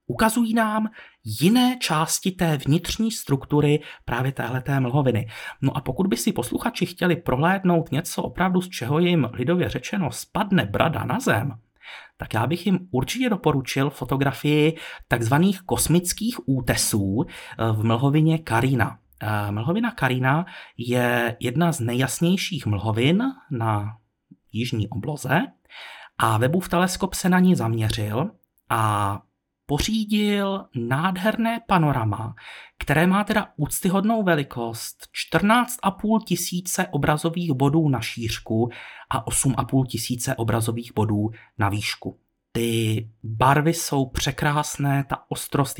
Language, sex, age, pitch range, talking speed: Czech, male, 30-49, 115-170 Hz, 115 wpm